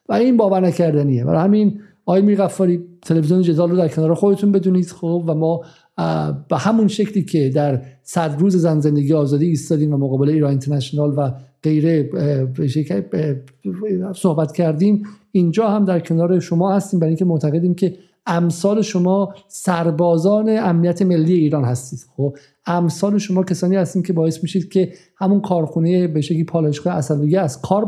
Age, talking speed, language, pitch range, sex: 50-69, 150 wpm, Persian, 155-185 Hz, male